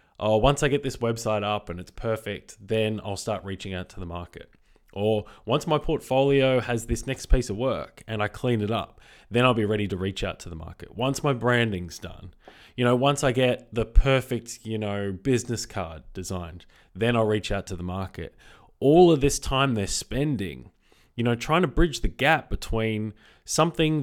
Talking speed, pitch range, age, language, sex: 200 wpm, 100-130 Hz, 20-39, English, male